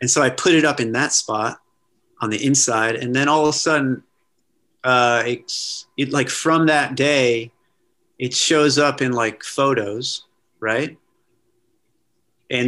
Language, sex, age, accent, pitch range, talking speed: English, male, 30-49, American, 110-145 Hz, 155 wpm